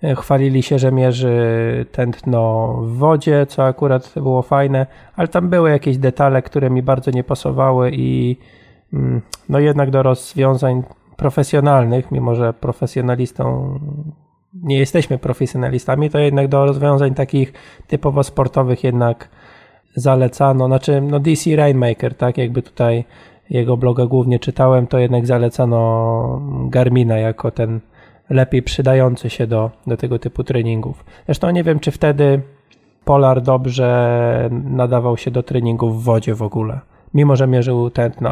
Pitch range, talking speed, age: 120-140 Hz, 135 wpm, 20-39